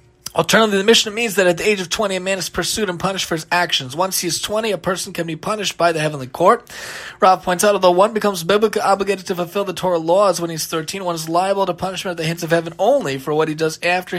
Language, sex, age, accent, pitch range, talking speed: English, male, 20-39, American, 170-215 Hz, 275 wpm